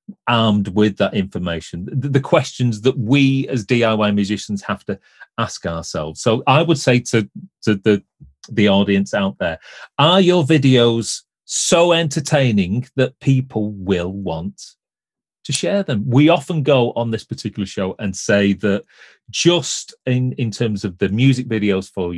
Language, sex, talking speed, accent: English, male, 155 wpm, British